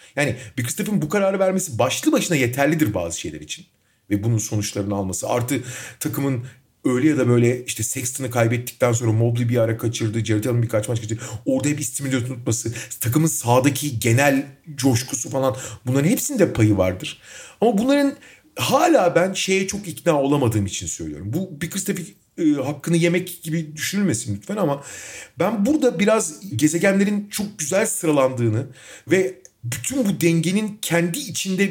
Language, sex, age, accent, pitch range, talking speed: Turkish, male, 40-59, native, 120-190 Hz, 150 wpm